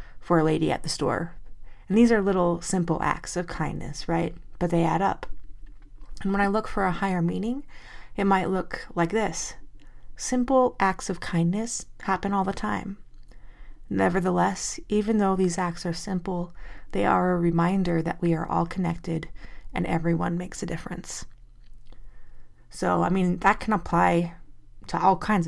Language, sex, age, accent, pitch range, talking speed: English, female, 30-49, American, 170-195 Hz, 165 wpm